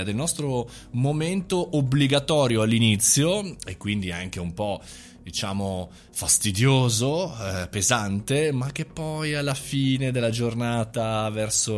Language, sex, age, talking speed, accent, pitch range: Italian, male, 20-39, 110 wpm, native, 100-140 Hz